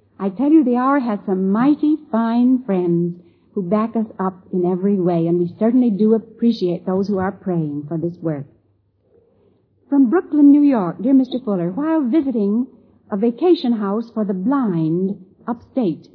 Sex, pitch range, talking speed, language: female, 180-260 Hz, 165 wpm, English